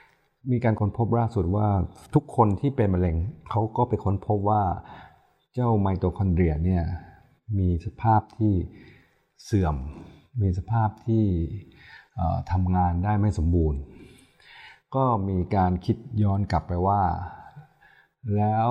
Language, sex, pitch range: Thai, male, 85-105 Hz